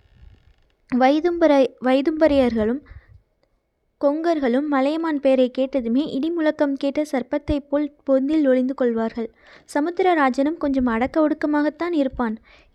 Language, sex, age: Tamil, female, 20-39